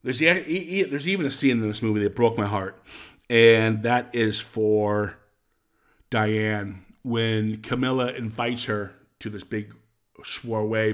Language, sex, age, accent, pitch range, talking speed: English, male, 50-69, American, 105-115 Hz, 135 wpm